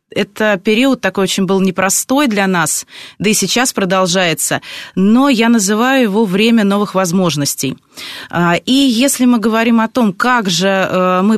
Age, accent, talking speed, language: 20-39, native, 150 wpm, Russian